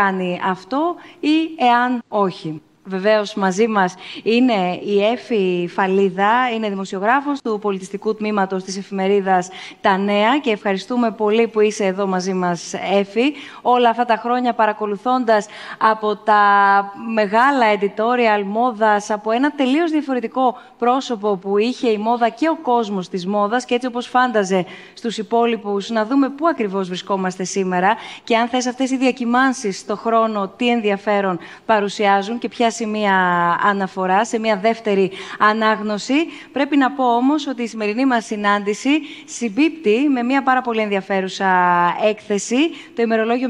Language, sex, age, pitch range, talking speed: Greek, female, 20-39, 200-245 Hz, 140 wpm